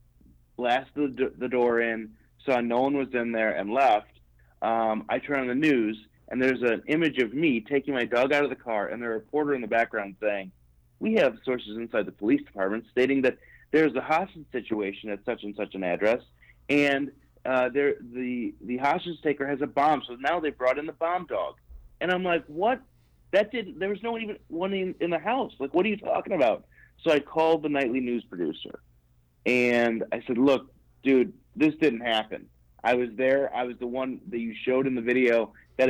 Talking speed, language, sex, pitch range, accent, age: 205 wpm, English, male, 110-135 Hz, American, 30-49